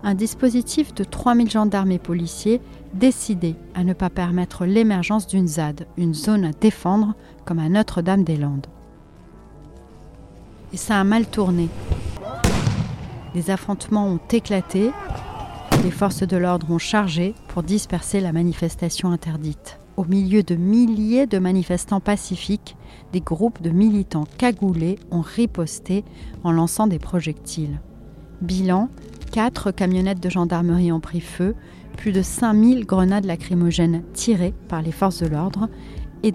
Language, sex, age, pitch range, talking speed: French, female, 40-59, 170-210 Hz, 130 wpm